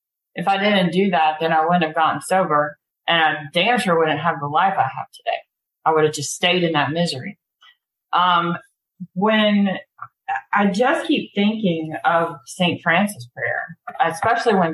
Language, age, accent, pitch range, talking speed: English, 30-49, American, 160-205 Hz, 170 wpm